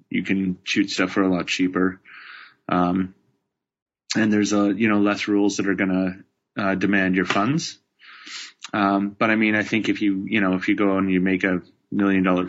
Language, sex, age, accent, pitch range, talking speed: English, male, 20-39, American, 90-100 Hz, 200 wpm